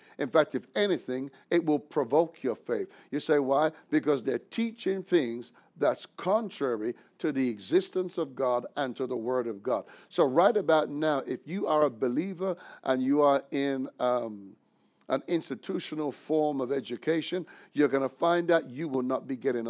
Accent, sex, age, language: American, male, 60-79, English